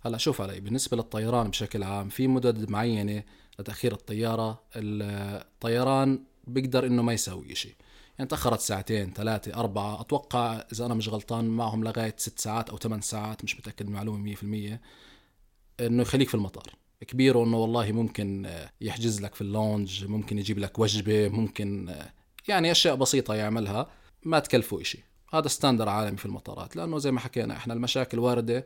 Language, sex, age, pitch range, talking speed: Arabic, male, 20-39, 105-130 Hz, 160 wpm